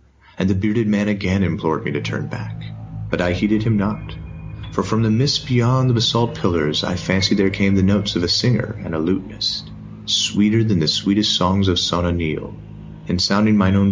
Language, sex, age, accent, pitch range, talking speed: English, male, 40-59, American, 80-105 Hz, 205 wpm